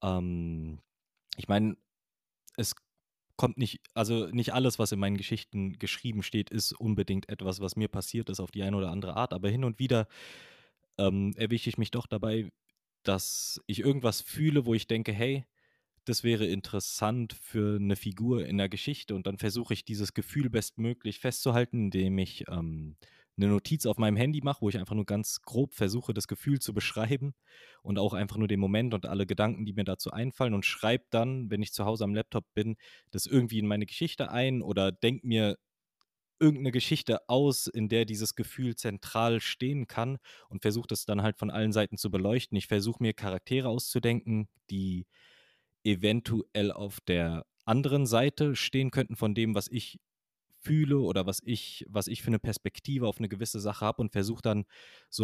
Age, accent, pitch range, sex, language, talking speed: 20-39, German, 100-120 Hz, male, German, 180 wpm